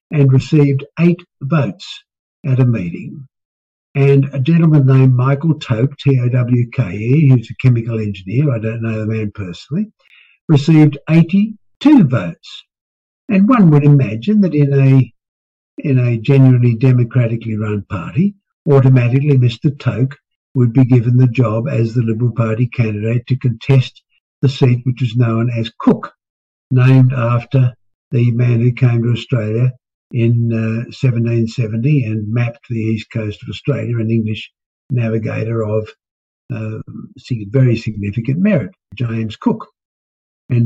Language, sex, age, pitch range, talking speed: English, male, 60-79, 115-140 Hz, 140 wpm